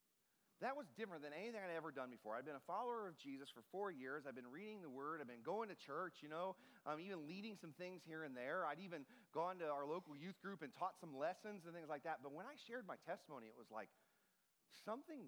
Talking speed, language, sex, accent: 255 wpm, English, male, American